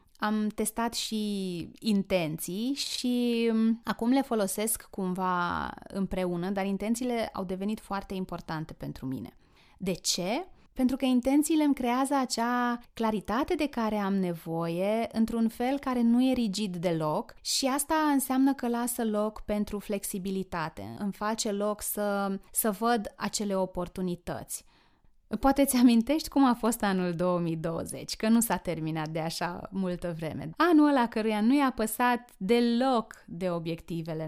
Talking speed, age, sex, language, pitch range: 135 wpm, 20-39, female, Romanian, 185-240 Hz